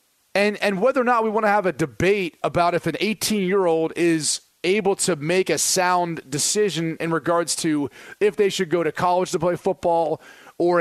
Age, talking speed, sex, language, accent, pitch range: 30-49, 195 wpm, male, English, American, 155-195 Hz